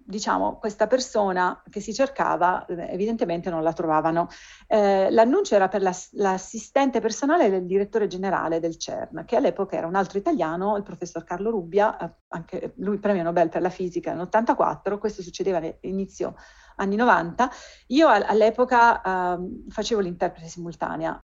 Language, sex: Italian, female